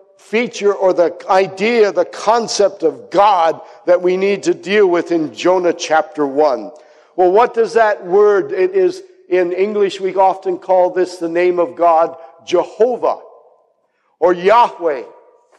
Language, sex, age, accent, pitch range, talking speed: English, male, 60-79, American, 175-265 Hz, 145 wpm